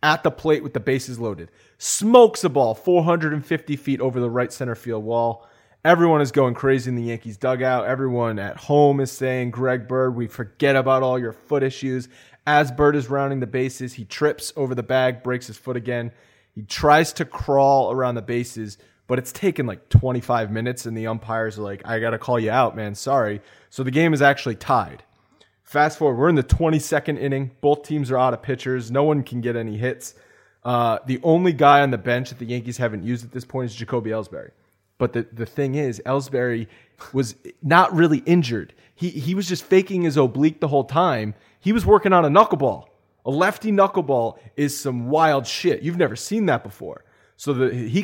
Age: 30-49